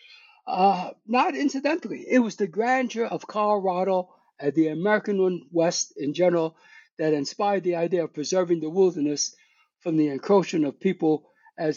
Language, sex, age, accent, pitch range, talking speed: English, male, 60-79, American, 175-255 Hz, 150 wpm